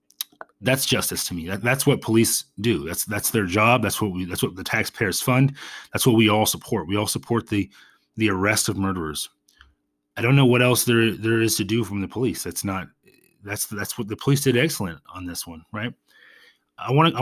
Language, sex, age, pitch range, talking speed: English, male, 30-49, 100-125 Hz, 220 wpm